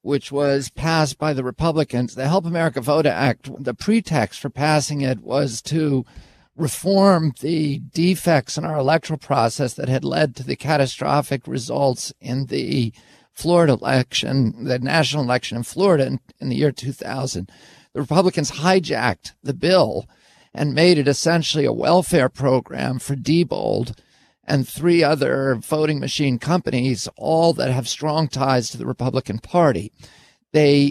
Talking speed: 150 wpm